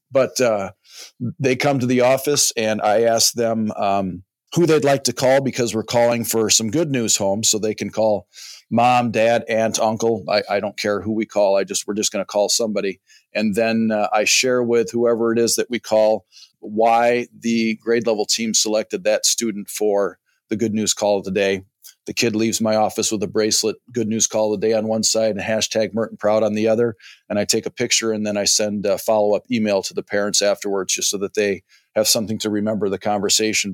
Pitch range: 105-120 Hz